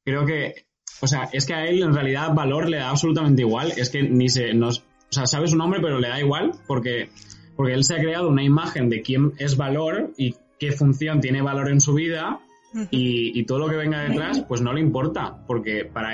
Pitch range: 125-155 Hz